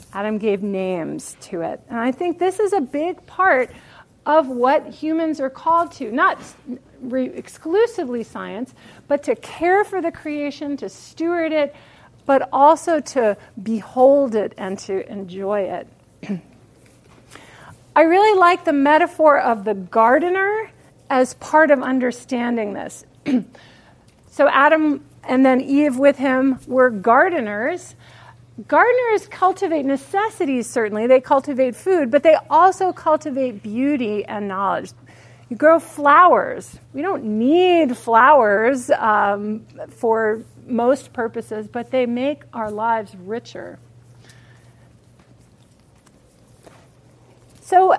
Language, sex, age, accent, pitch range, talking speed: English, female, 40-59, American, 215-315 Hz, 120 wpm